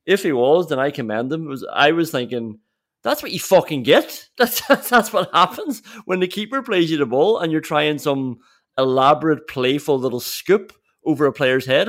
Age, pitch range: 30-49, 125-160 Hz